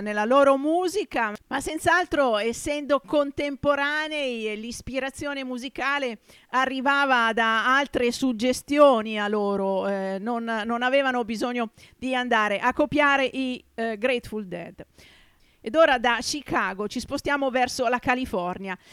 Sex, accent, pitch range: female, native, 210-265 Hz